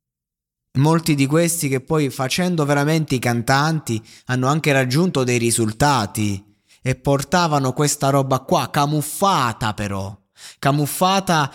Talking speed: 115 wpm